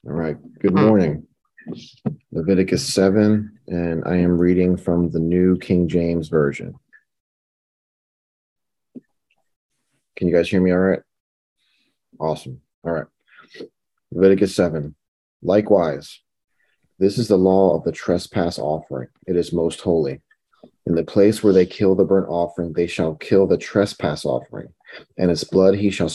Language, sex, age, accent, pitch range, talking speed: English, male, 30-49, American, 85-95 Hz, 140 wpm